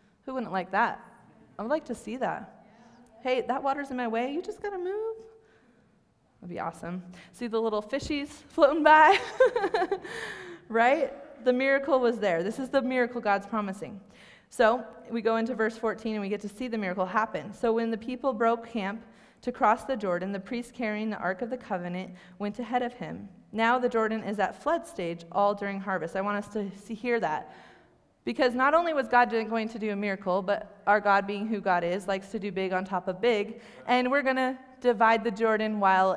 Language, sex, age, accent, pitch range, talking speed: English, female, 20-39, American, 200-255 Hz, 205 wpm